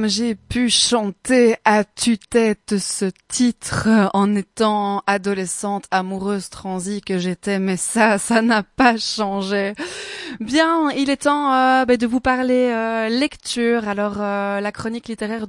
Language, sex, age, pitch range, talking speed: French, female, 20-39, 185-230 Hz, 140 wpm